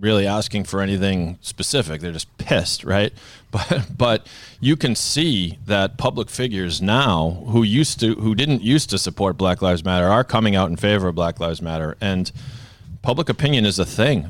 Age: 30-49